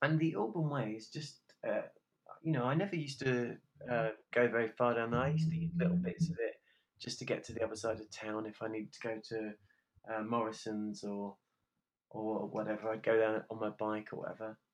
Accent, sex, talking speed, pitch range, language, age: British, male, 220 wpm, 110-150 Hz, English, 30-49